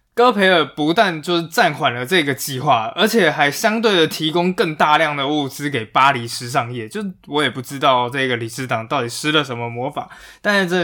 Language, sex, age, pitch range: Chinese, male, 20-39, 130-175 Hz